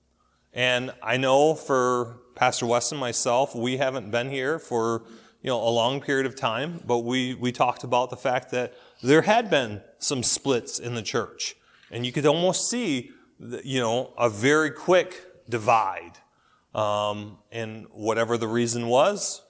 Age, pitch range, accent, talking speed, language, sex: 30-49, 115-135 Hz, American, 165 wpm, English, male